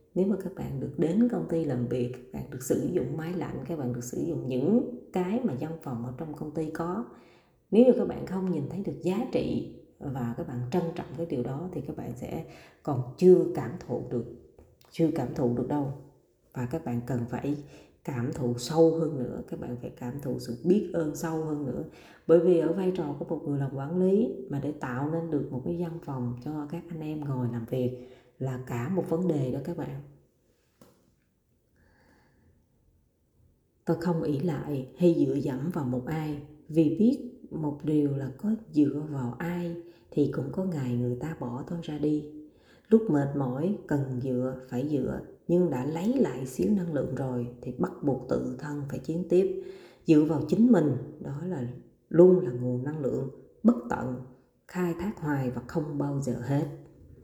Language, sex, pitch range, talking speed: Vietnamese, female, 125-170 Hz, 200 wpm